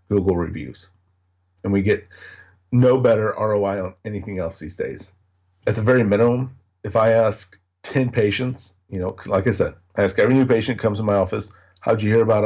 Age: 50-69